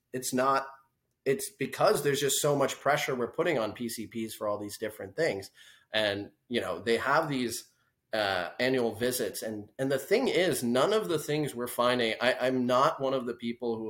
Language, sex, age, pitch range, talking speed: English, male, 30-49, 110-135 Hz, 195 wpm